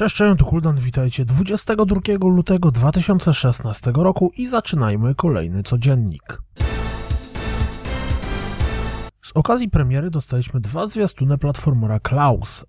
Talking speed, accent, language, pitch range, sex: 95 wpm, native, Polish, 115-180 Hz, male